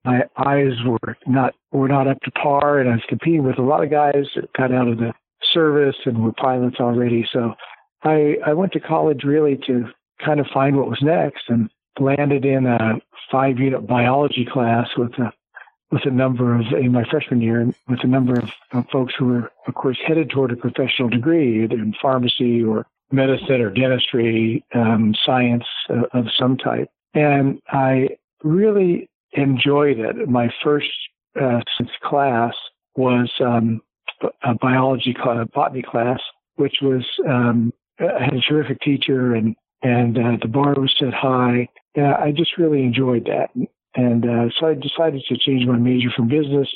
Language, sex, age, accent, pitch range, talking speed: English, male, 60-79, American, 120-140 Hz, 175 wpm